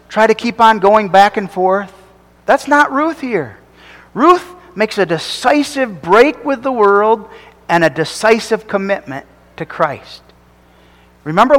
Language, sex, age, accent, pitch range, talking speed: English, male, 40-59, American, 165-255 Hz, 140 wpm